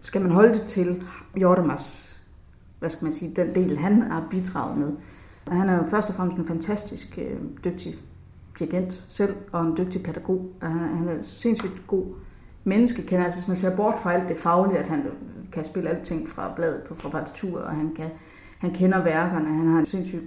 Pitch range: 160-200 Hz